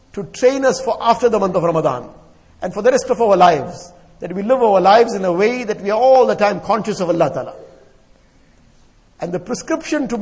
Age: 50-69